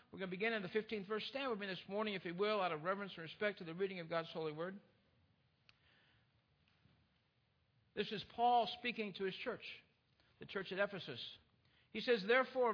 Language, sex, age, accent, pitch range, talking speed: English, male, 60-79, American, 170-235 Hz, 200 wpm